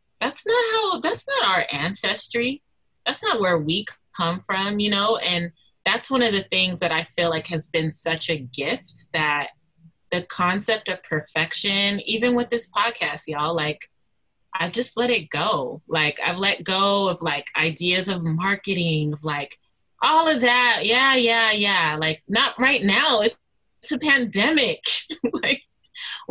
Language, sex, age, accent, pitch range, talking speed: English, female, 20-39, American, 165-230 Hz, 160 wpm